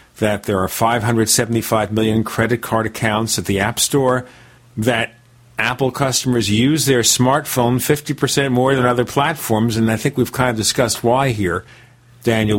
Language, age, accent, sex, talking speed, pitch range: English, 50-69, American, male, 155 wpm, 115-145 Hz